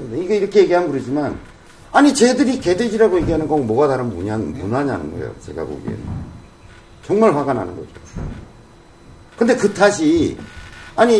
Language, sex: Korean, male